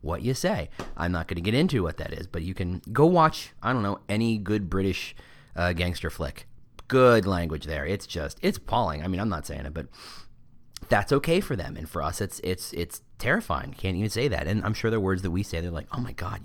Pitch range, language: 95-125 Hz, English